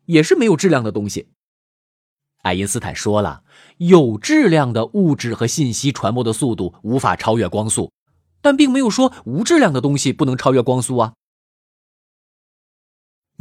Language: Chinese